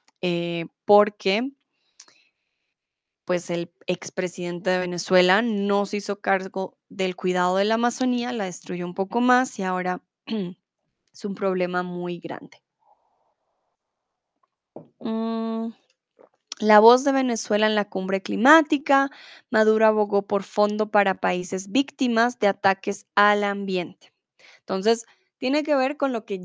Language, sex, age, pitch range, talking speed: Spanish, female, 20-39, 185-230 Hz, 125 wpm